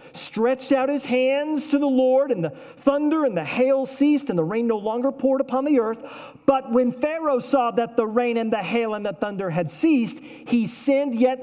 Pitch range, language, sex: 170-265 Hz, English, male